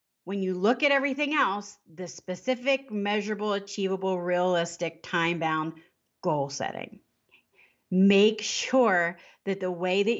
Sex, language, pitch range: female, English, 170-215 Hz